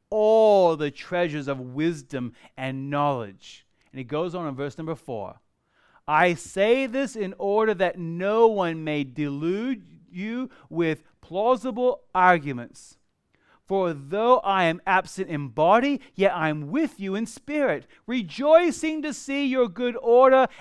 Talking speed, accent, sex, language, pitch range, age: 140 wpm, American, male, English, 155-225 Hz, 30-49